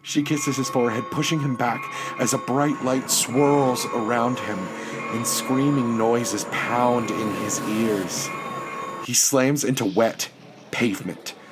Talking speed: 135 wpm